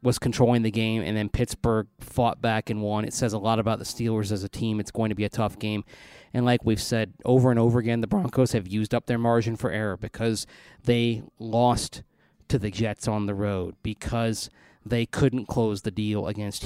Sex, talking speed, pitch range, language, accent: male, 220 wpm, 110-120 Hz, English, American